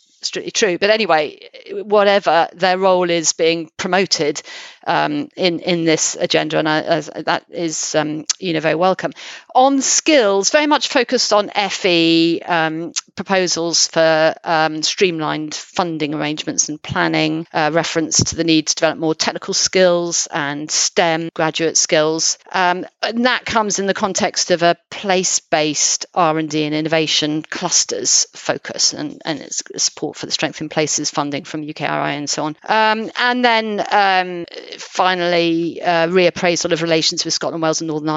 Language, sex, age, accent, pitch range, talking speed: English, female, 40-59, British, 160-200 Hz, 150 wpm